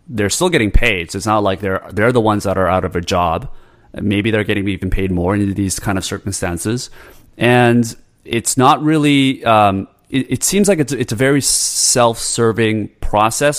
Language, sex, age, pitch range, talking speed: English, male, 30-49, 95-120 Hz, 200 wpm